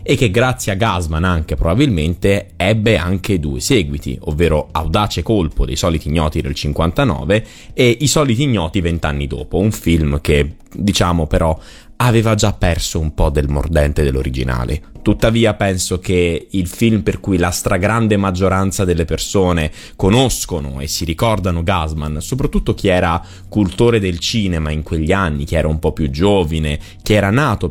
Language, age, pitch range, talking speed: Italian, 20-39, 80-105 Hz, 160 wpm